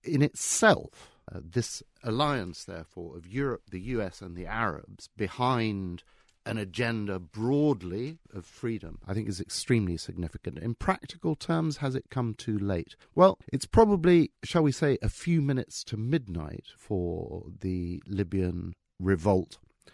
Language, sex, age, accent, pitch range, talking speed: English, male, 50-69, British, 95-130 Hz, 140 wpm